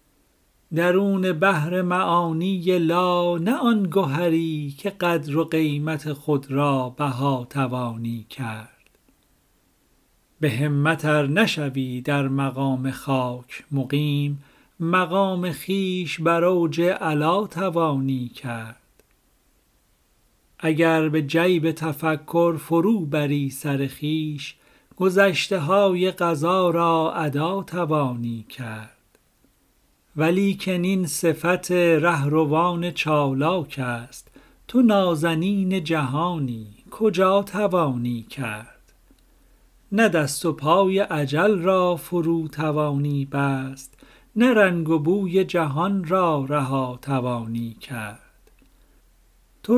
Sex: male